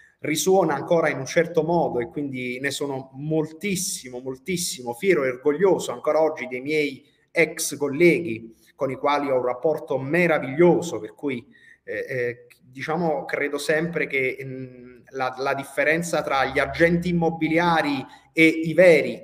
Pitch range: 135-175 Hz